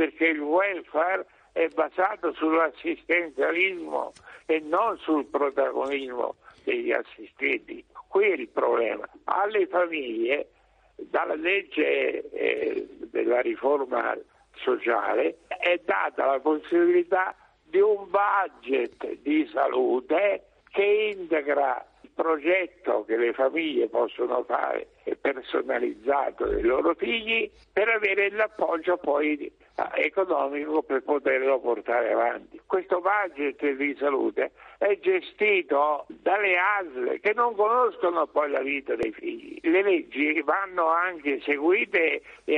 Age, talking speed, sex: 60-79, 110 wpm, male